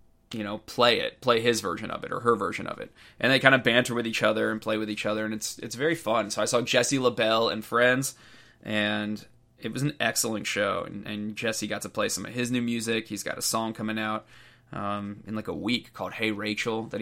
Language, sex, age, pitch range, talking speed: English, male, 20-39, 110-125 Hz, 250 wpm